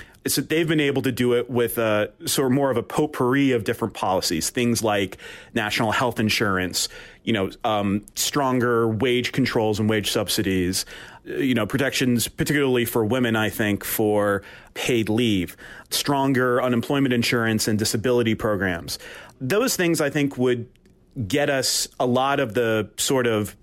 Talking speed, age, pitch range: 155 wpm, 30-49, 110-130 Hz